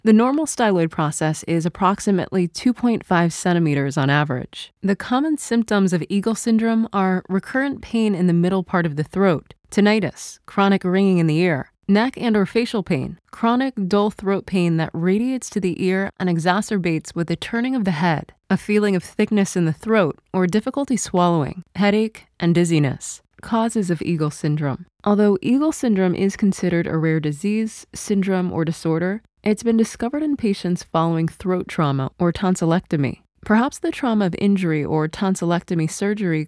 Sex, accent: female, American